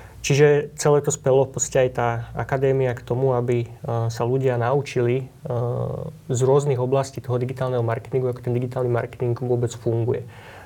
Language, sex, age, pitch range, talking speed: Slovak, male, 20-39, 120-135 Hz, 150 wpm